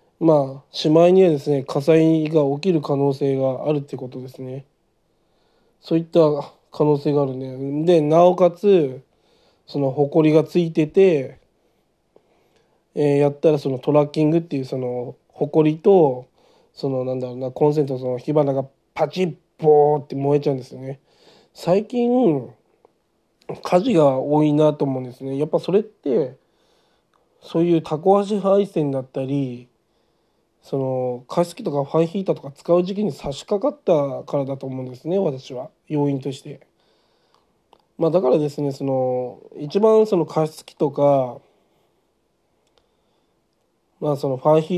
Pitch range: 135-170 Hz